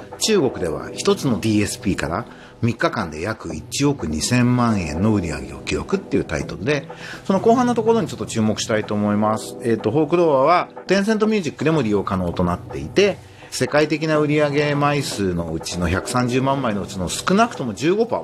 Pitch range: 105-170 Hz